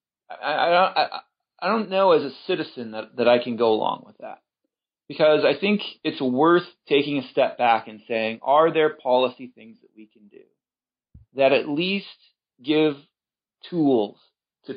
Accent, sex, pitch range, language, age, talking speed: American, male, 115-155 Hz, English, 30-49, 165 wpm